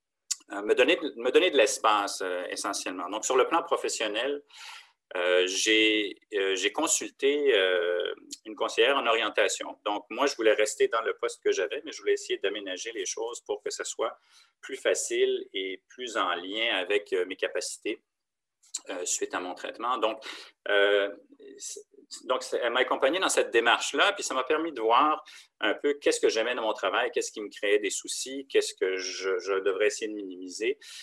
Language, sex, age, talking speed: French, male, 40-59, 190 wpm